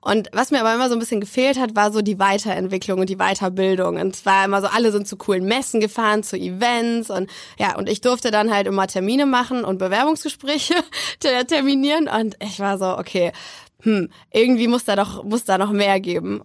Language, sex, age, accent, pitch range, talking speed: German, female, 20-39, German, 195-235 Hz, 210 wpm